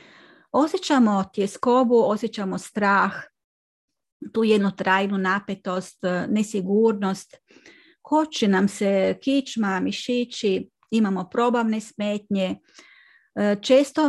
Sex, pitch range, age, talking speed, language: female, 200-250 Hz, 40-59, 75 wpm, Croatian